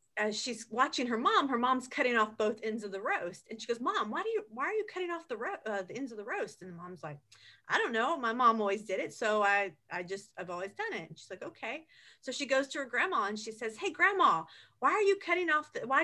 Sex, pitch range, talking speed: female, 205-275 Hz, 285 wpm